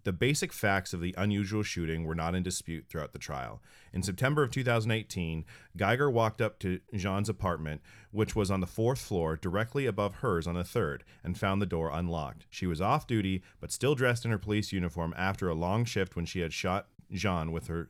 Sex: male